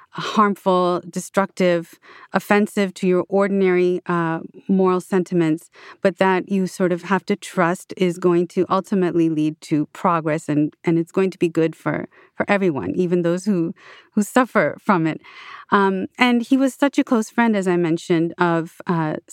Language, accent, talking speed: English, American, 170 wpm